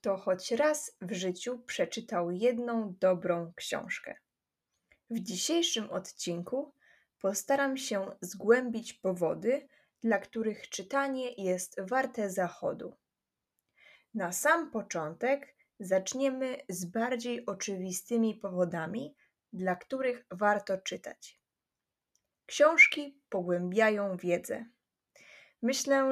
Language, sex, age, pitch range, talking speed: Polish, female, 20-39, 190-250 Hz, 85 wpm